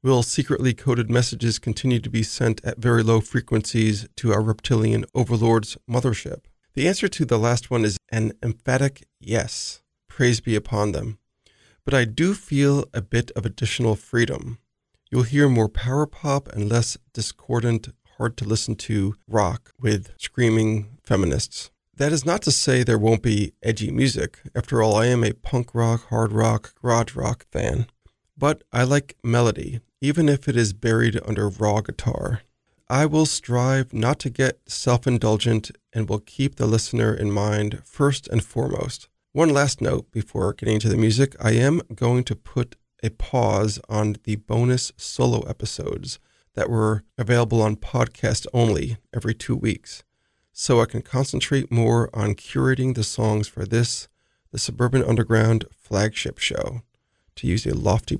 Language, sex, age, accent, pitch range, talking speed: English, male, 40-59, American, 110-130 Hz, 160 wpm